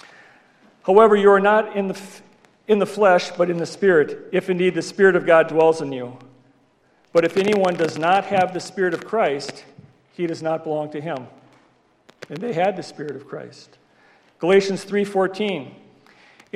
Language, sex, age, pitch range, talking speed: English, male, 50-69, 175-225 Hz, 175 wpm